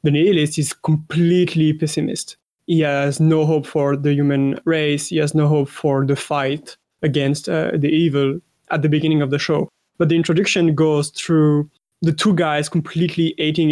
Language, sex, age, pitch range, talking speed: English, male, 20-39, 145-165 Hz, 175 wpm